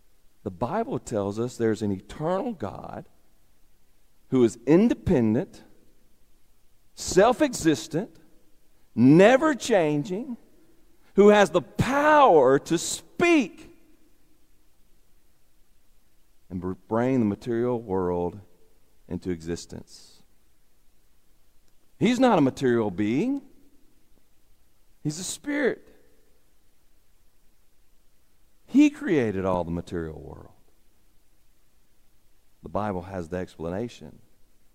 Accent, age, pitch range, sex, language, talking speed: American, 50-69, 95-150 Hz, male, English, 80 wpm